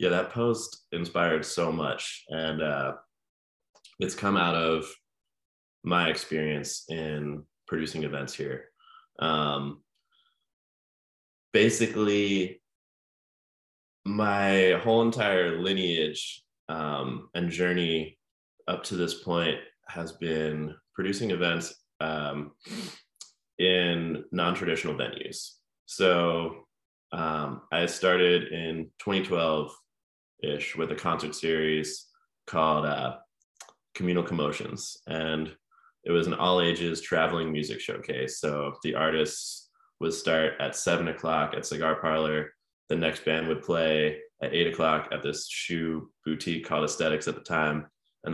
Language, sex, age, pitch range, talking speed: English, male, 20-39, 75-90 Hz, 115 wpm